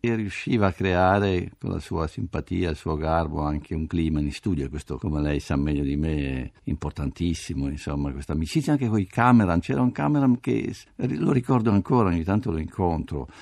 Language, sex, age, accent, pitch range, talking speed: Italian, male, 50-69, native, 80-105 Hz, 190 wpm